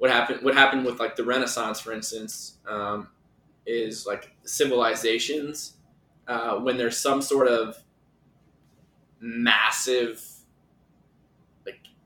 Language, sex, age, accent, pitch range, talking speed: English, male, 20-39, American, 115-130 Hz, 110 wpm